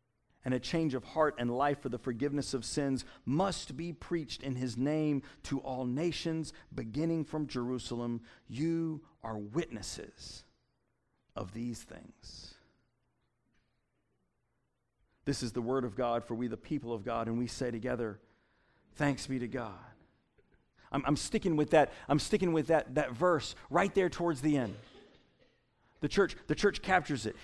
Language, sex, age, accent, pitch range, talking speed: English, male, 50-69, American, 125-185 Hz, 155 wpm